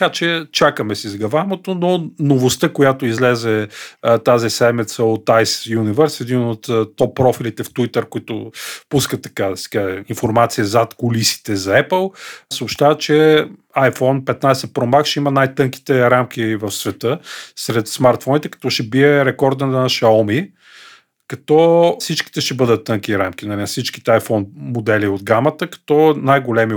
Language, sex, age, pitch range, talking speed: Bulgarian, male, 40-59, 115-150 Hz, 145 wpm